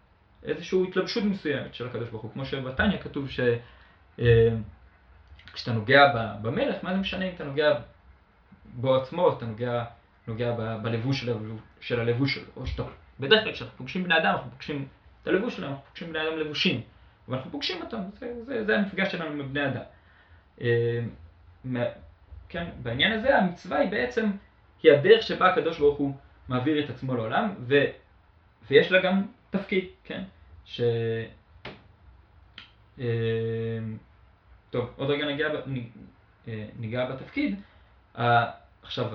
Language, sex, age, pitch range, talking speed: Hebrew, male, 20-39, 105-150 Hz, 100 wpm